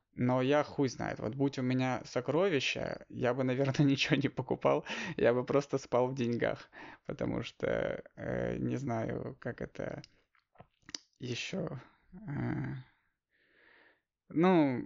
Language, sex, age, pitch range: Russian, male, 20-39, 115-140 Hz